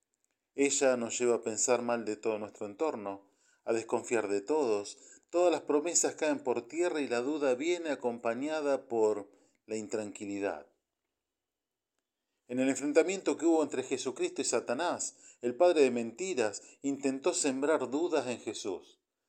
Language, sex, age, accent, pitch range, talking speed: Spanish, male, 40-59, Argentinian, 120-160 Hz, 145 wpm